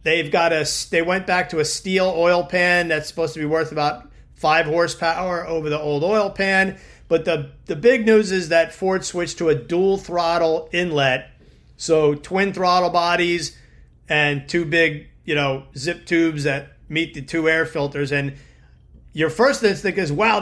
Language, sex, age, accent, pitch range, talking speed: English, male, 40-59, American, 150-175 Hz, 180 wpm